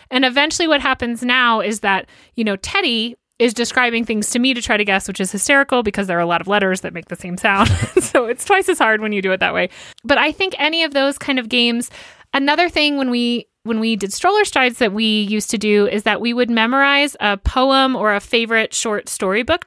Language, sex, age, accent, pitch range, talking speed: English, female, 30-49, American, 205-265 Hz, 245 wpm